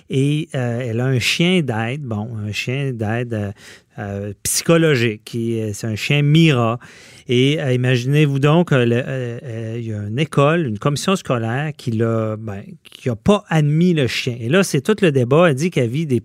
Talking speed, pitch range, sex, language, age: 195 wpm, 115-155 Hz, male, French, 40-59